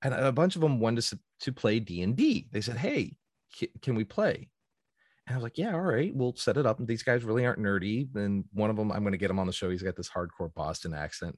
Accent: American